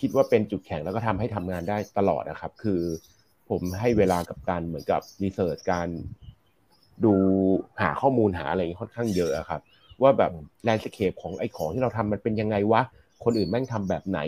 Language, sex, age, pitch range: Thai, male, 30-49, 90-115 Hz